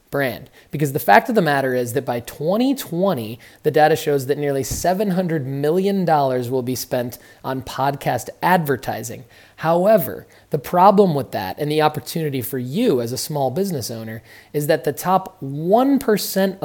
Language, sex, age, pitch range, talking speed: English, male, 20-39, 130-165 Hz, 160 wpm